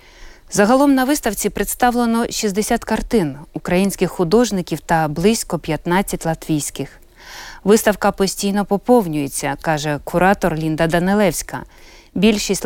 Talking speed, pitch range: 100 wpm, 170-220 Hz